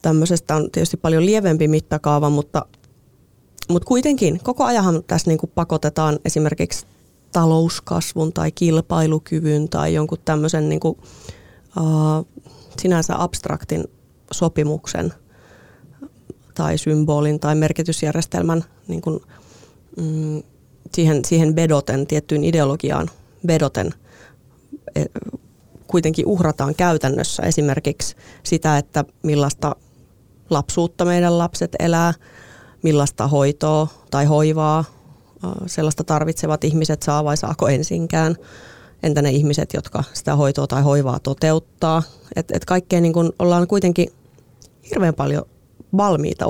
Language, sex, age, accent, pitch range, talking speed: Finnish, female, 30-49, native, 150-170 Hz, 100 wpm